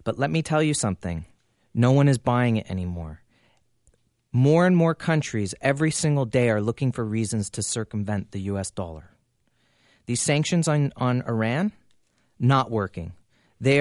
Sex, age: male, 30-49